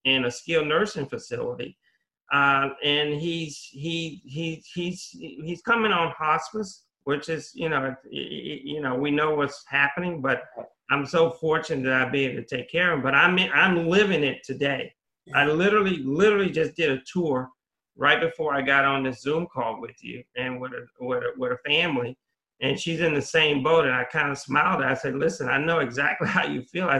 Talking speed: 205 wpm